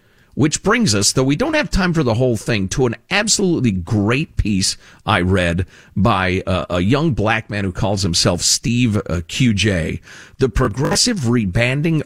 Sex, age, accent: male, 50-69, American